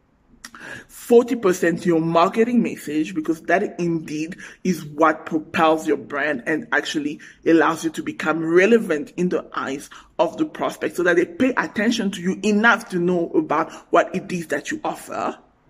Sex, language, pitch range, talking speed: male, English, 170-255 Hz, 160 wpm